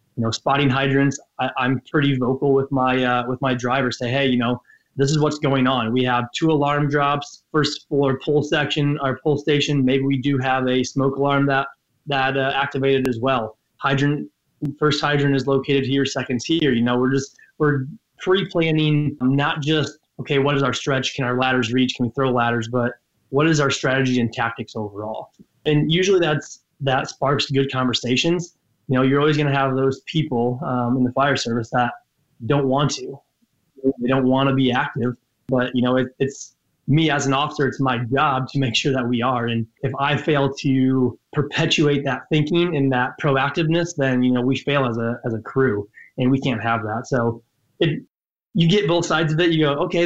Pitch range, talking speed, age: 125-145 Hz, 205 wpm, 20-39